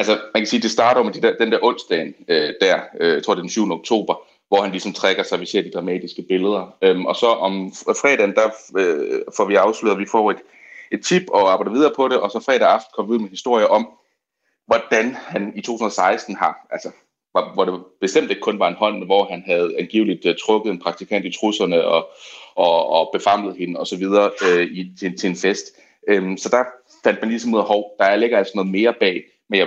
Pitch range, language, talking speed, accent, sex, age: 95-125 Hz, Danish, 240 wpm, native, male, 30-49